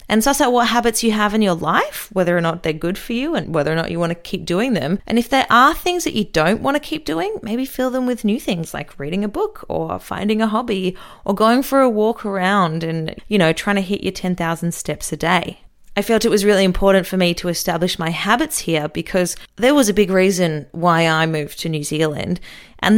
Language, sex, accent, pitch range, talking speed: English, female, Australian, 175-225 Hz, 250 wpm